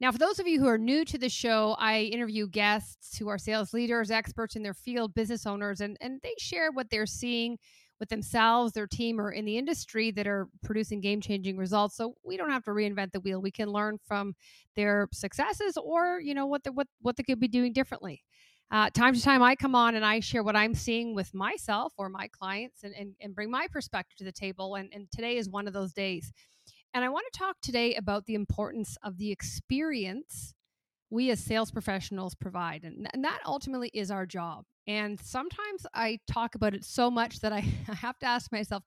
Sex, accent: female, American